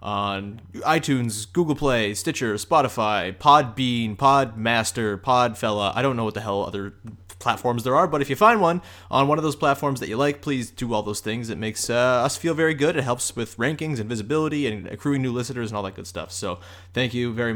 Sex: male